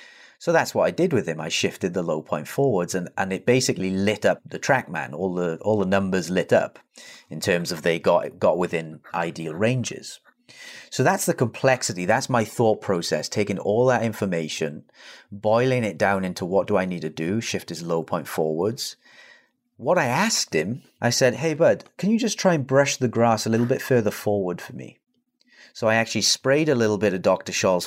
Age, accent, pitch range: 30-49, British, 95-135 Hz